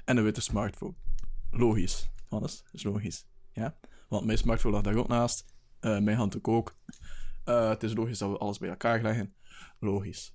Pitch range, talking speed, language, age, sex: 105-125 Hz, 185 wpm, Dutch, 20-39, male